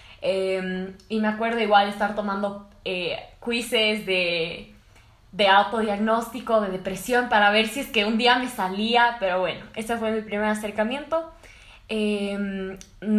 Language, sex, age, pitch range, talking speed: Spanish, female, 10-29, 190-225 Hz, 140 wpm